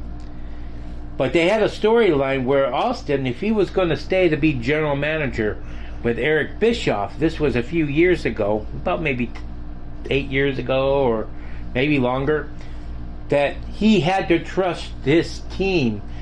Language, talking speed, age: English, 150 wpm, 40-59